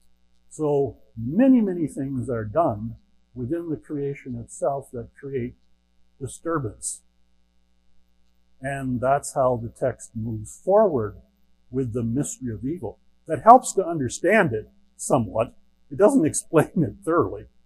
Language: English